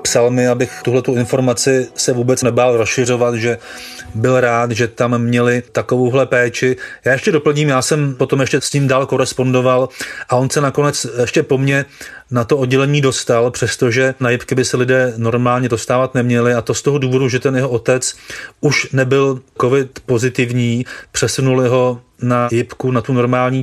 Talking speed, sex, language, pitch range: 175 wpm, male, Czech, 115-130 Hz